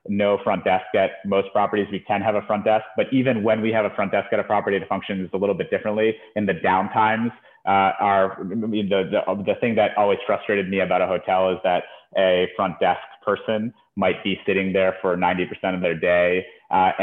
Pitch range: 95-115 Hz